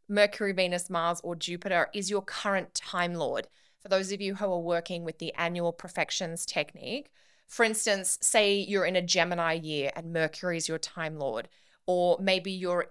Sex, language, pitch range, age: female, English, 170-210 Hz, 20-39